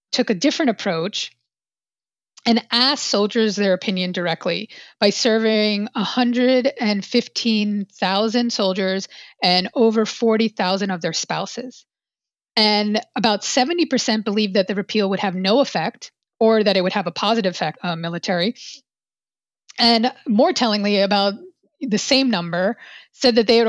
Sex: female